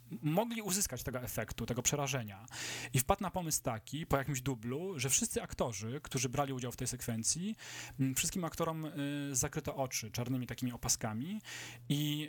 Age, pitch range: 30-49, 125-155 Hz